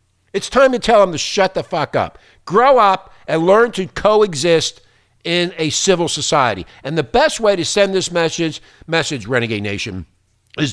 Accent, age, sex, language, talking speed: American, 50-69, male, English, 180 wpm